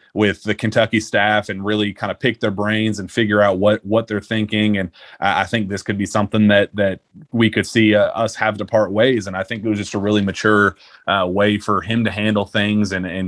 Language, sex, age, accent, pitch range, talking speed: English, male, 30-49, American, 105-115 Hz, 245 wpm